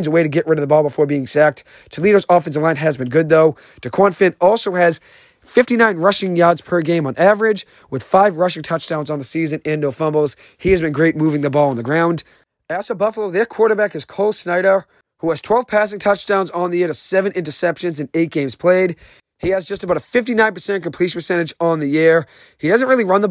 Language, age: English, 30-49